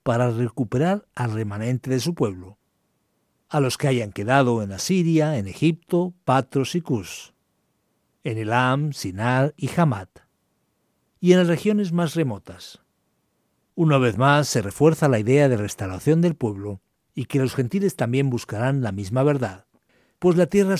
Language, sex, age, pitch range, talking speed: Spanish, male, 60-79, 115-155 Hz, 155 wpm